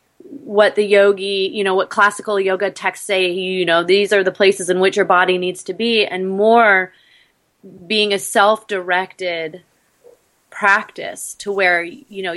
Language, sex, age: English, female, 30-49